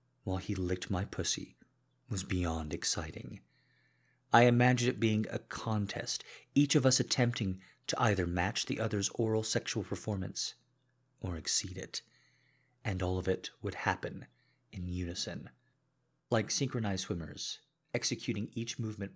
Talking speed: 135 wpm